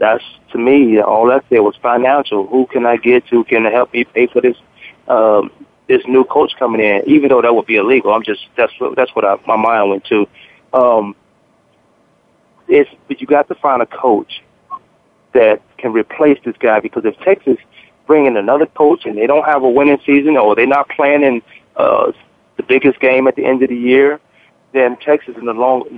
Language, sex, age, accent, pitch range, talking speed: English, male, 30-49, American, 110-140 Hz, 205 wpm